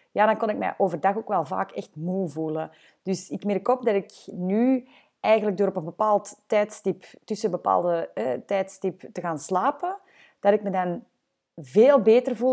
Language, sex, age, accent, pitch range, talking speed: English, female, 30-49, Dutch, 180-245 Hz, 190 wpm